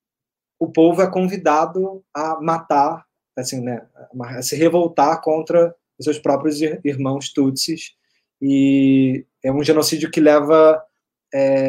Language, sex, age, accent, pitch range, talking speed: Portuguese, male, 20-39, Brazilian, 145-180 Hz, 125 wpm